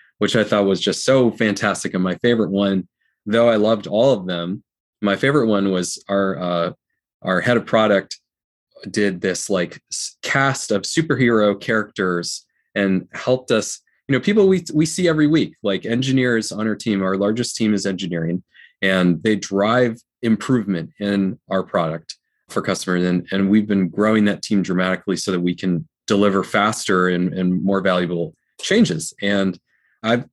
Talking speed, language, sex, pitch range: 170 wpm, English, male, 95-125 Hz